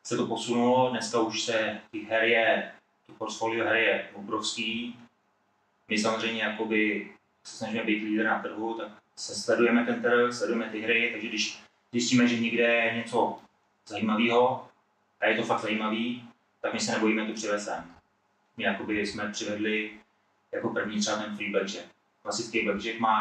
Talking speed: 160 wpm